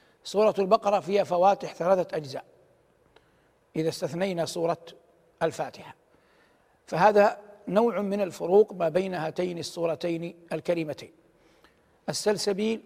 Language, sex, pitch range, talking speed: Arabic, male, 170-205 Hz, 95 wpm